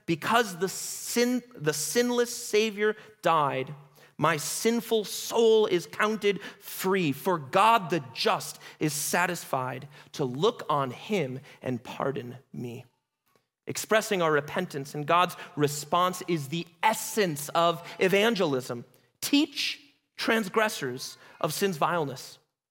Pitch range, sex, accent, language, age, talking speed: 140-210 Hz, male, American, English, 30-49, 110 wpm